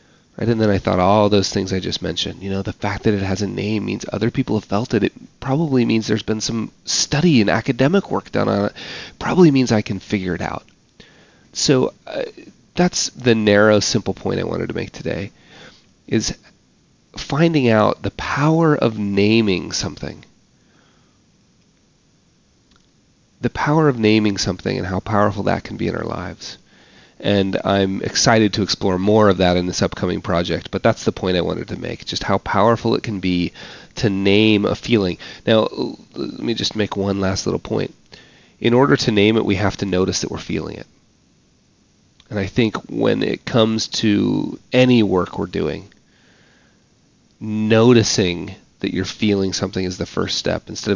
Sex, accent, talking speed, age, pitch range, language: male, American, 180 wpm, 30-49, 95-115 Hz, English